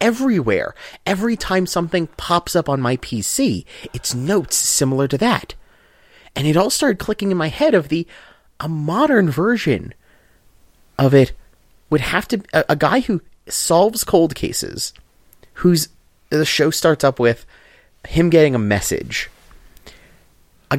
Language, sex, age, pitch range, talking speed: English, male, 30-49, 120-190 Hz, 145 wpm